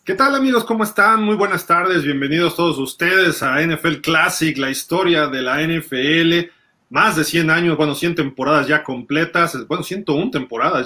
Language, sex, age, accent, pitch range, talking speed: Spanish, male, 30-49, Mexican, 135-160 Hz, 170 wpm